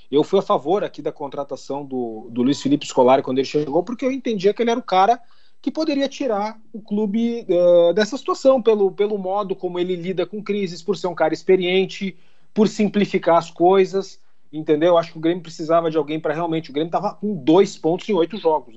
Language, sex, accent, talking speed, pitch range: Portuguese, male, Brazilian, 215 wpm, 160-200 Hz